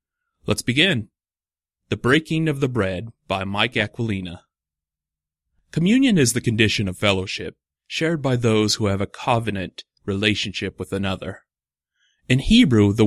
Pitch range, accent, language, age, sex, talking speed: 100-130 Hz, American, English, 30-49, male, 135 wpm